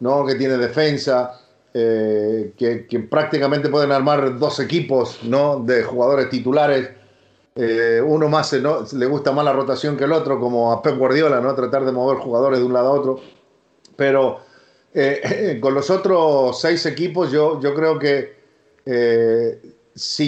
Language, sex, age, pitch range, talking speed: Spanish, male, 50-69, 125-155 Hz, 165 wpm